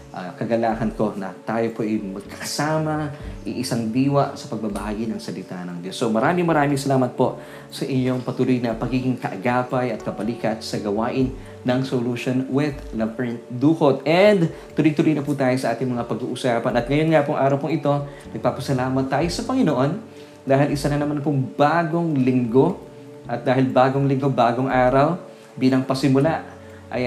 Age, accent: 20-39, native